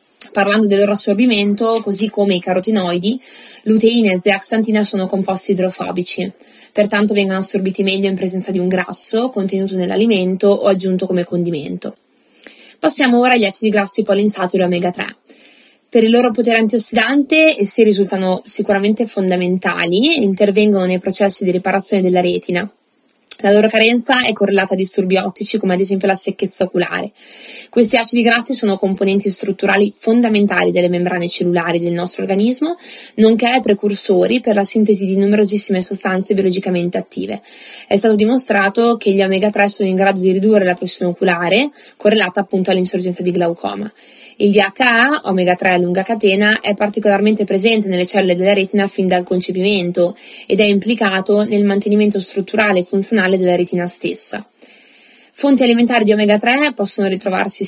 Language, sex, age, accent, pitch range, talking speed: Italian, female, 20-39, native, 190-220 Hz, 150 wpm